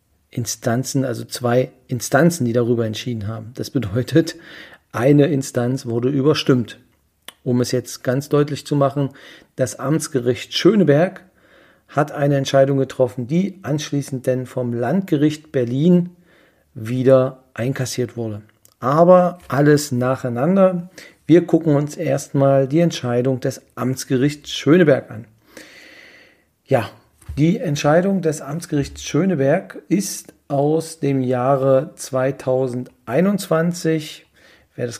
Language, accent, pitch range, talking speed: German, German, 125-150 Hz, 110 wpm